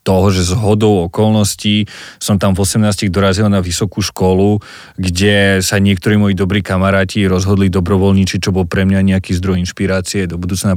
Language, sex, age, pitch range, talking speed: Slovak, male, 30-49, 95-105 Hz, 165 wpm